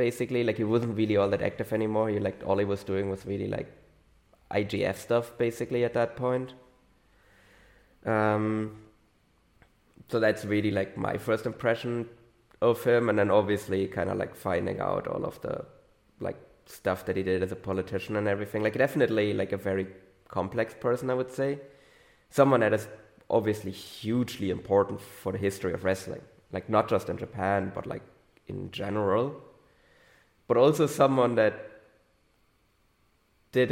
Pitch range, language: 100-115 Hz, English